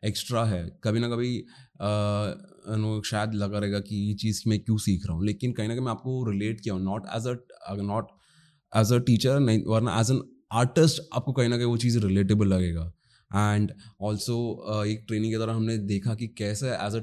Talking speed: 120 wpm